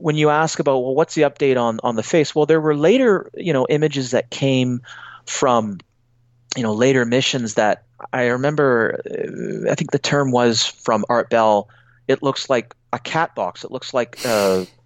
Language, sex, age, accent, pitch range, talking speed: English, male, 30-49, American, 120-150 Hz, 190 wpm